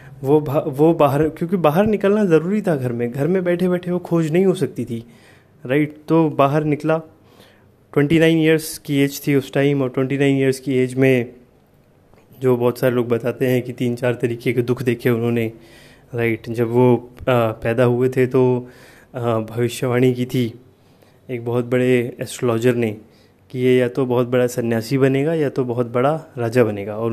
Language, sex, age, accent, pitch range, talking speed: Hindi, male, 20-39, native, 120-135 Hz, 180 wpm